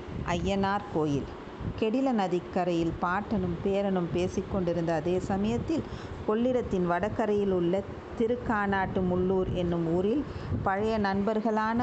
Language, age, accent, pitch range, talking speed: Tamil, 50-69, native, 185-215 Hz, 90 wpm